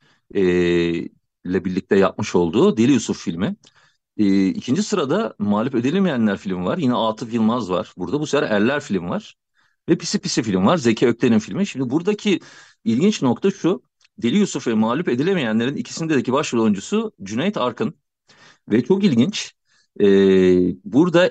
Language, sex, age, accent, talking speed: Turkish, male, 40-59, native, 150 wpm